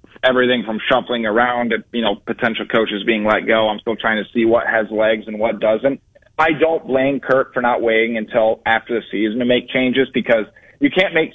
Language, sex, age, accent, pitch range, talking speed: English, male, 30-49, American, 115-135 Hz, 215 wpm